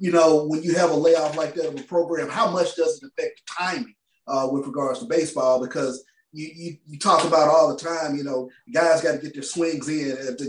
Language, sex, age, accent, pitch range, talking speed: English, male, 30-49, American, 145-175 Hz, 245 wpm